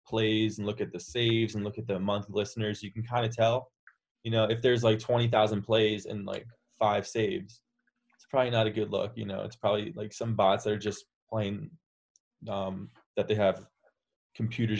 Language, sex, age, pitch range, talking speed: English, male, 20-39, 110-125 Hz, 205 wpm